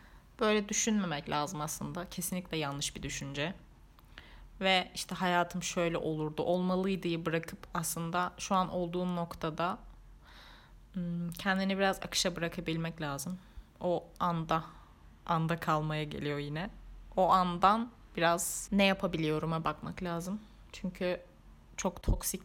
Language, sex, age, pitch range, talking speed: Turkish, female, 30-49, 160-190 Hz, 110 wpm